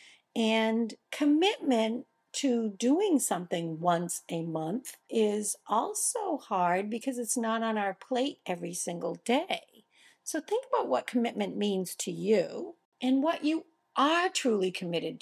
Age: 50-69